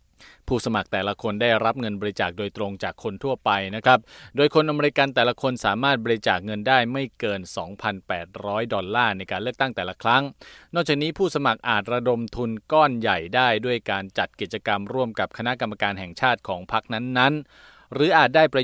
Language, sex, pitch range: Thai, male, 100-130 Hz